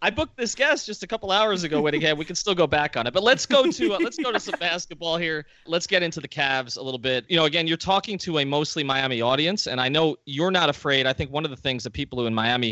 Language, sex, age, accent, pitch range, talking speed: English, male, 30-49, American, 115-150 Hz, 300 wpm